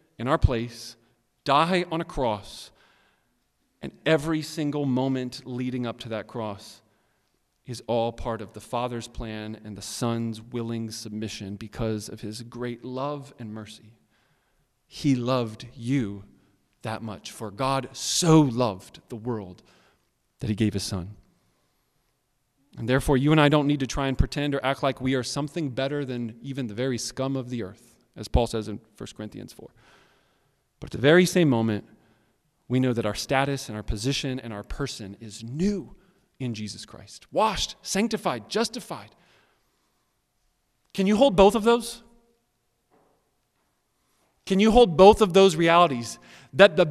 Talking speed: 160 wpm